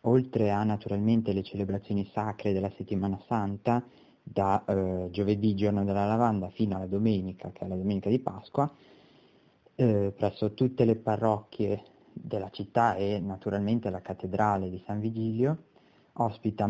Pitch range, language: 100-115 Hz, Italian